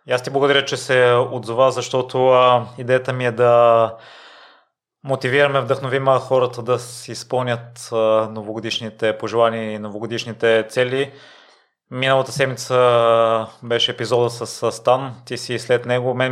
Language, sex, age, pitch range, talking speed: Bulgarian, male, 20-39, 110-125 Hz, 125 wpm